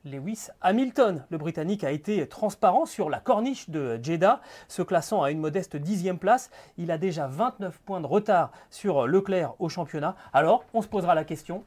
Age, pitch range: 30-49, 160-225 Hz